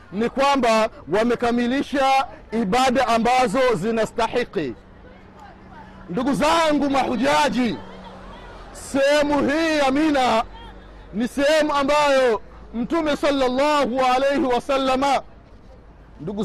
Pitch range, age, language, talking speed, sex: 245-290 Hz, 50-69, Swahili, 75 wpm, male